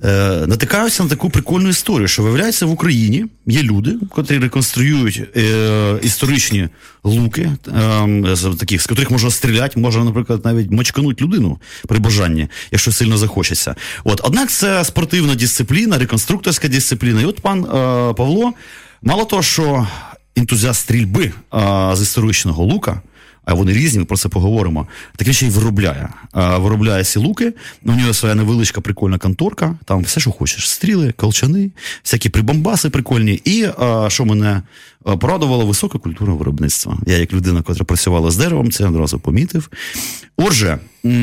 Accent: native